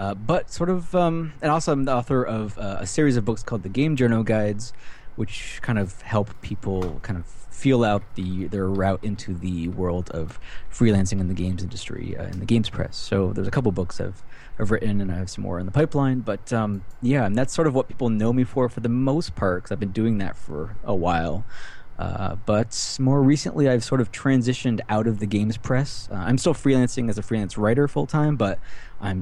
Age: 20-39